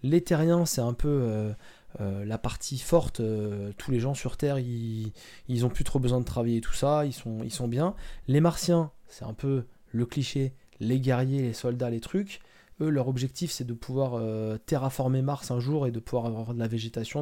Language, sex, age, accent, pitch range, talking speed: French, male, 20-39, French, 120-150 Hz, 215 wpm